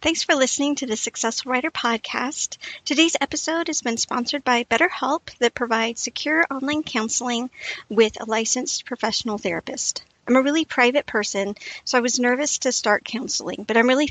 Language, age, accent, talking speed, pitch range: English, 50-69, American, 170 wpm, 220-275 Hz